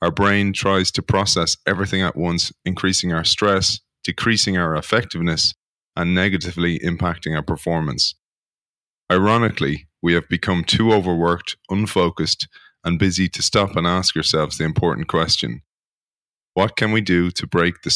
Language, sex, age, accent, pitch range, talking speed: English, male, 30-49, Irish, 85-100 Hz, 145 wpm